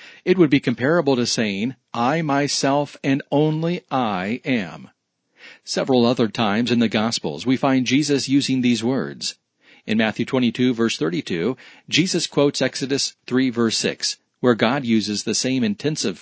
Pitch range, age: 120-145 Hz, 40-59